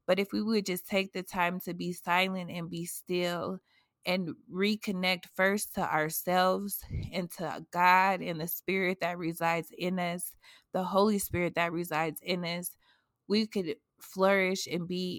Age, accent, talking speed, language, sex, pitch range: 20-39, American, 160 wpm, English, female, 165-185 Hz